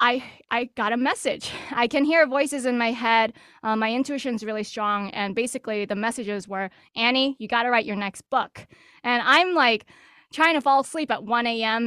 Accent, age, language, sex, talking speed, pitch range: American, 20-39, English, female, 205 wpm, 215-265 Hz